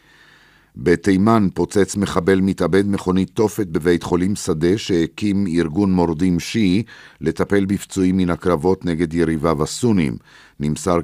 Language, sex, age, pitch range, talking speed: Hebrew, male, 50-69, 80-95 Hz, 115 wpm